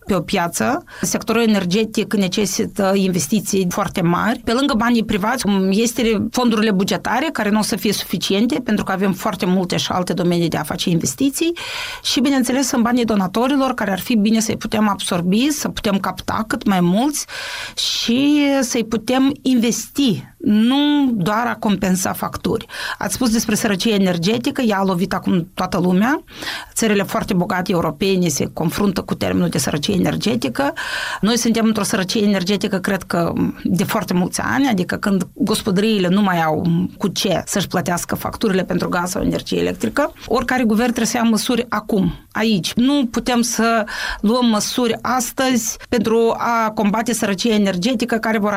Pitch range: 195-240 Hz